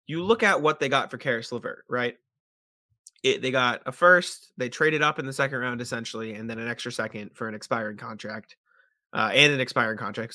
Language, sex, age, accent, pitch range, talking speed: English, male, 20-39, American, 110-140 Hz, 215 wpm